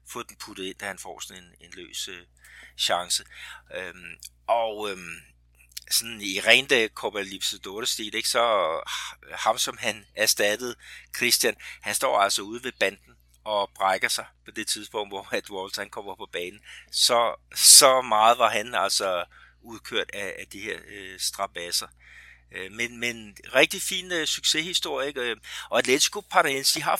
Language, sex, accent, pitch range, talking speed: Danish, male, native, 85-120 Hz, 165 wpm